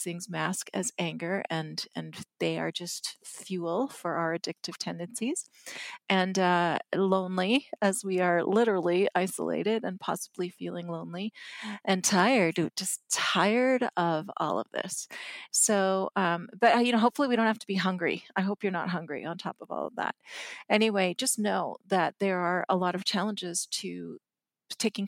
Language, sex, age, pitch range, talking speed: English, female, 40-59, 170-200 Hz, 165 wpm